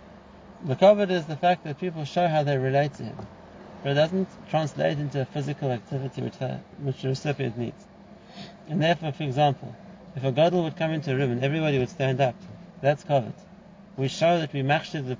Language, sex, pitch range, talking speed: English, male, 140-190 Hz, 200 wpm